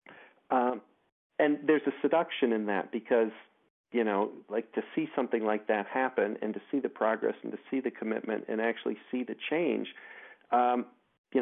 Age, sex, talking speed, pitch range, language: 40-59, male, 180 wpm, 120-150 Hz, English